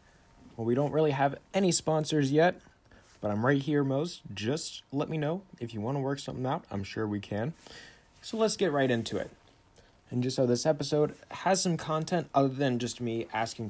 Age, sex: 20-39, male